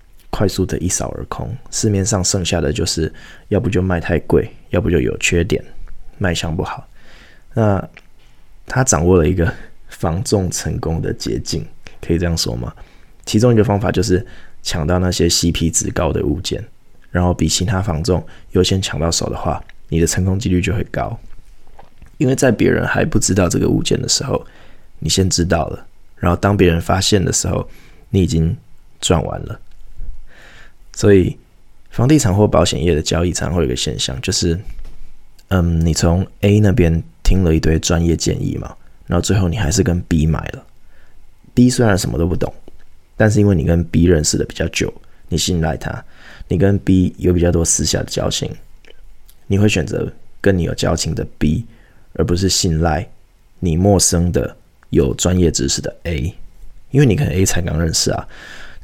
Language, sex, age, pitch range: Chinese, male, 20-39, 85-100 Hz